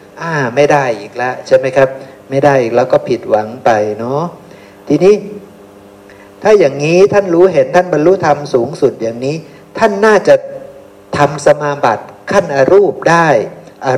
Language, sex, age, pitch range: Thai, male, 60-79, 120-175 Hz